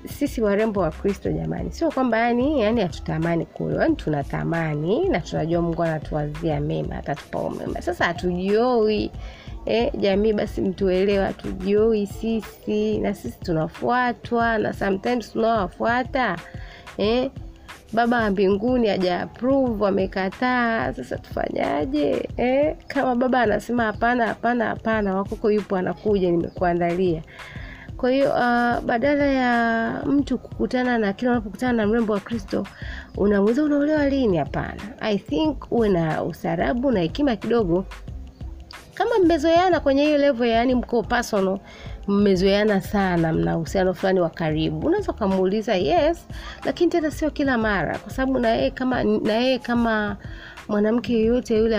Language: Swahili